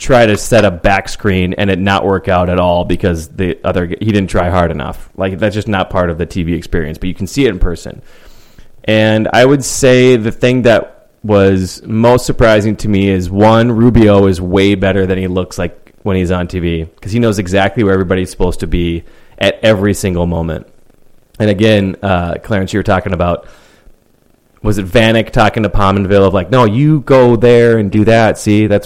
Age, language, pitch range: 30-49, English, 95-115 Hz